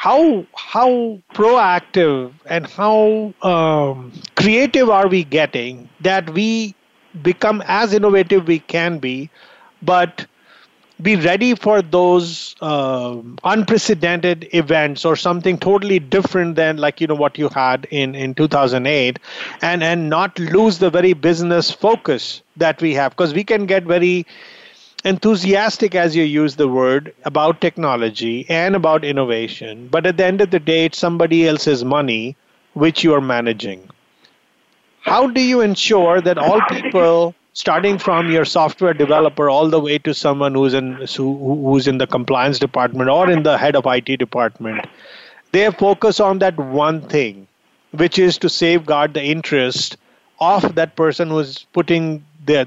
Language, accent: English, Indian